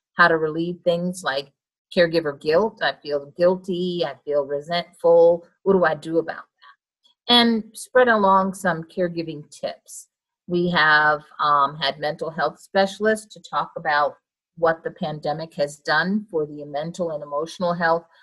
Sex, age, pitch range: female, 50-69, 165-215 Hz